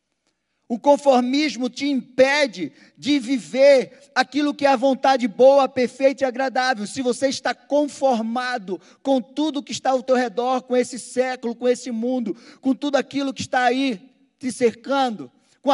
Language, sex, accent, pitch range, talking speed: Portuguese, male, Brazilian, 225-265 Hz, 155 wpm